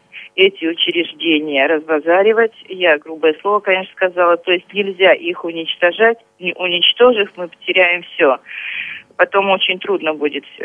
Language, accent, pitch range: Russian, native, 165-230 Hz